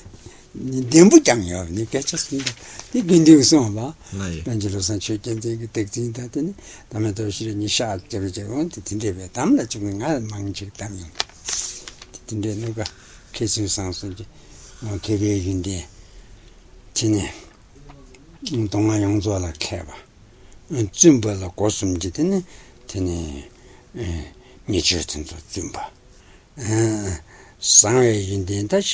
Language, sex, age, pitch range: Italian, male, 60-79, 90-115 Hz